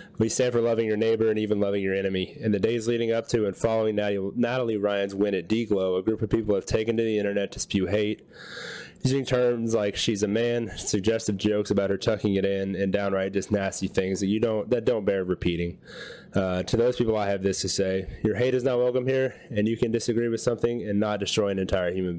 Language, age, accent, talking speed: English, 20-39, American, 240 wpm